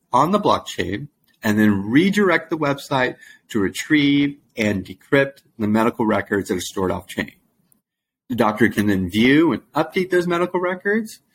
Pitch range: 105-155 Hz